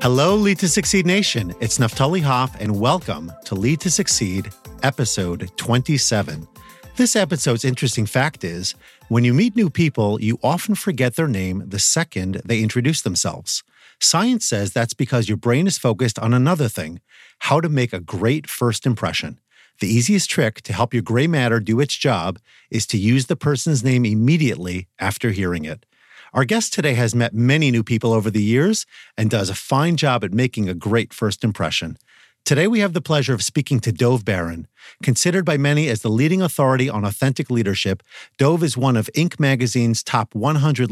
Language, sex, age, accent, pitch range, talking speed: English, male, 40-59, American, 110-145 Hz, 185 wpm